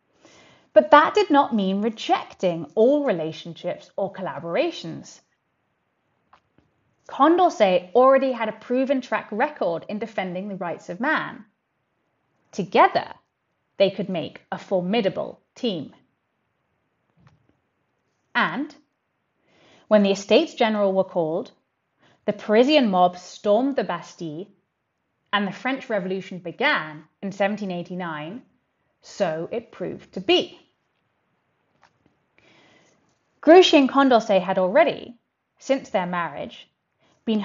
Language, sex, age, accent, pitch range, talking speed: English, female, 30-49, British, 180-255 Hz, 105 wpm